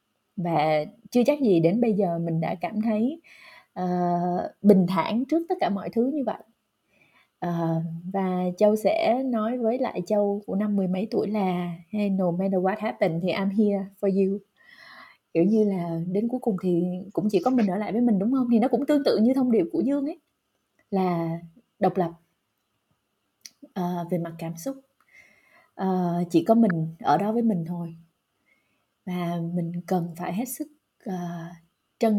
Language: Vietnamese